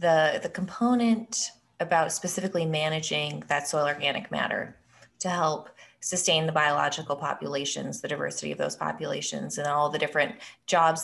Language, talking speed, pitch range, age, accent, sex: English, 140 wpm, 150-195 Hz, 20-39, American, female